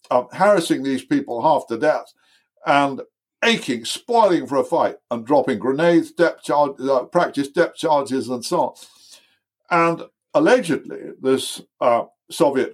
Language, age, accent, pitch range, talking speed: English, 60-79, British, 120-175 Hz, 140 wpm